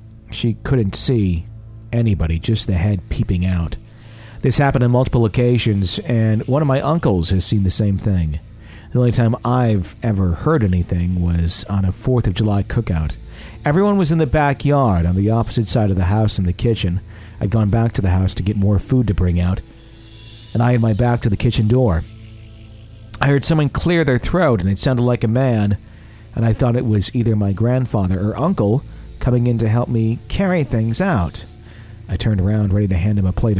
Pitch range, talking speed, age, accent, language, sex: 100-120 Hz, 205 wpm, 50-69, American, English, male